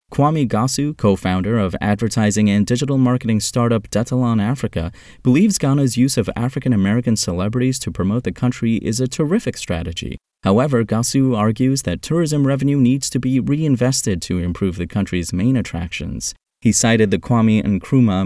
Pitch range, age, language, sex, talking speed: 90-125 Hz, 30-49, English, male, 150 wpm